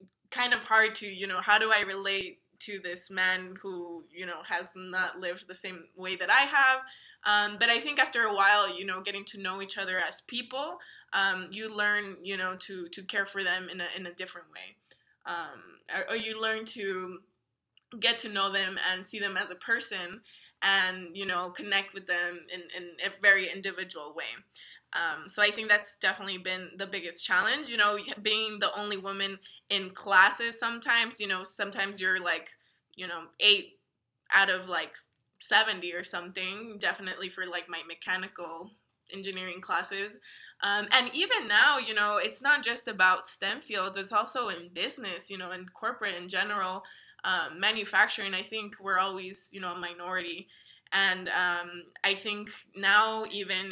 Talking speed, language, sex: 180 wpm, English, female